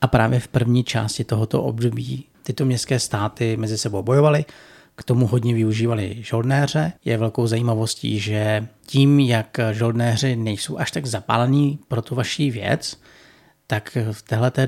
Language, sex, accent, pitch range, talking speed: Czech, male, native, 110-125 Hz, 145 wpm